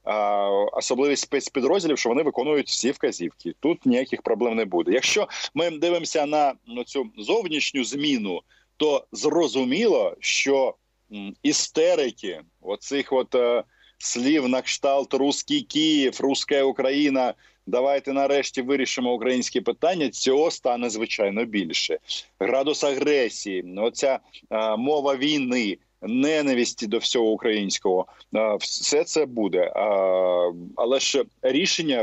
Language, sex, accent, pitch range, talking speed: Ukrainian, male, native, 120-170 Hz, 110 wpm